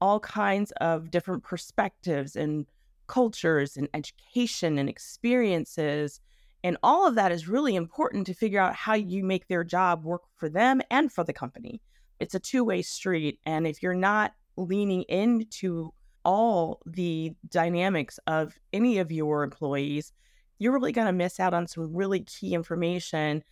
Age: 30-49